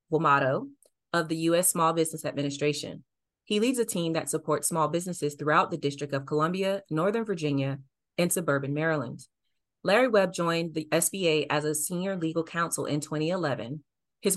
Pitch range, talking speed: 145-180 Hz, 160 wpm